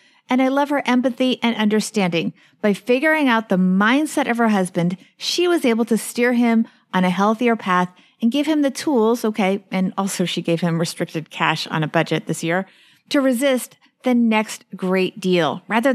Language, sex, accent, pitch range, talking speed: English, female, American, 195-260 Hz, 190 wpm